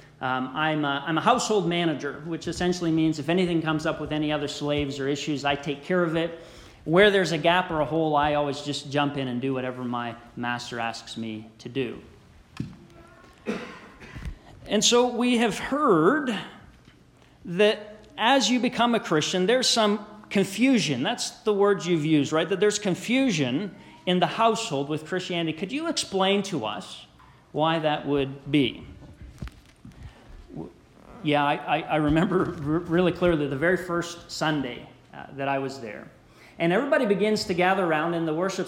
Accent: American